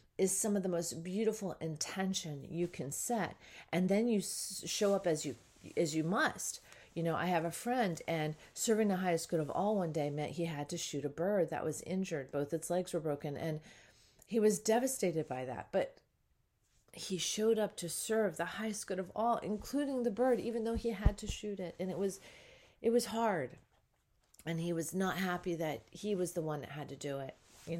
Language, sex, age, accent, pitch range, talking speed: English, female, 40-59, American, 160-220 Hz, 215 wpm